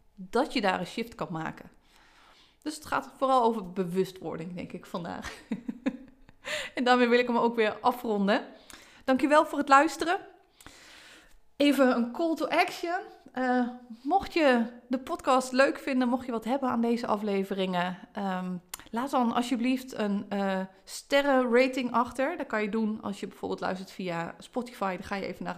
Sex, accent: female, Dutch